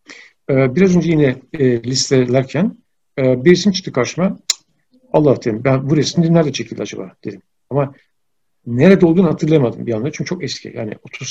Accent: native